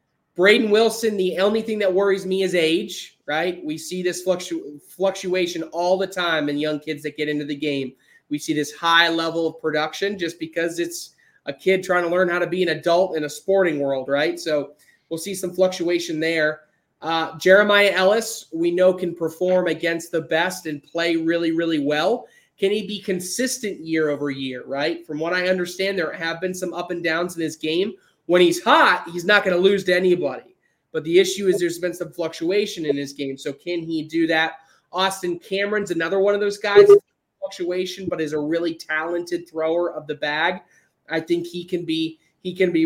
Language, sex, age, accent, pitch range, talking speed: English, male, 20-39, American, 160-185 Hz, 205 wpm